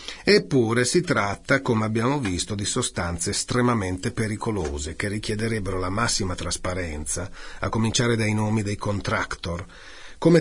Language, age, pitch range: Italian, 40-59, 105-135 Hz